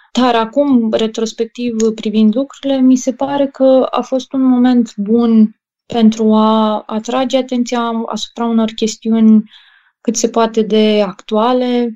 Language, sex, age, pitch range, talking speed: Romanian, female, 20-39, 210-245 Hz, 130 wpm